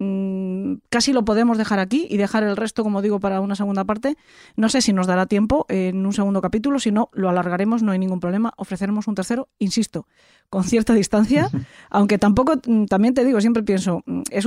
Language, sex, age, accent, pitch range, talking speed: Spanish, female, 20-39, Spanish, 190-230 Hz, 200 wpm